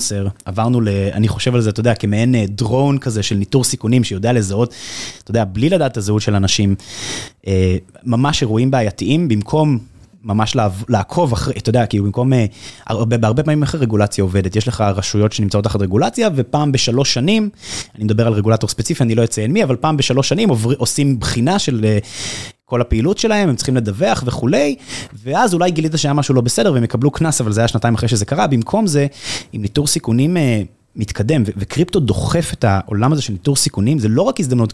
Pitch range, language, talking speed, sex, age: 105-140 Hz, Hebrew, 190 wpm, male, 20-39